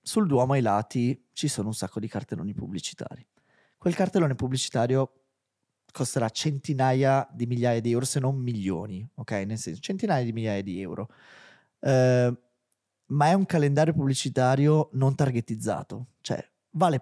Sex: male